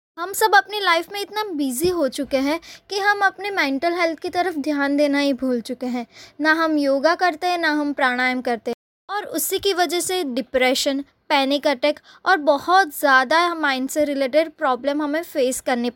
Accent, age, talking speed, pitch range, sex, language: native, 20-39, 190 wpm, 280-360 Hz, female, Hindi